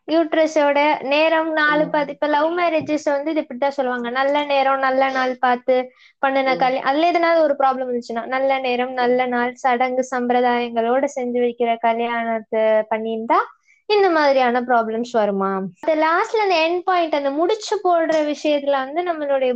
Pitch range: 245-320 Hz